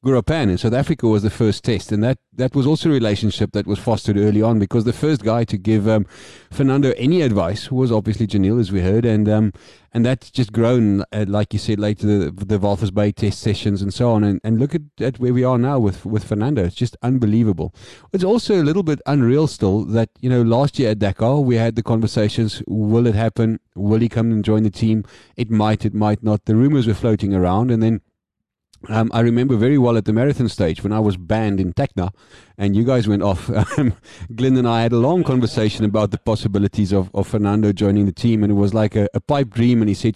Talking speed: 235 wpm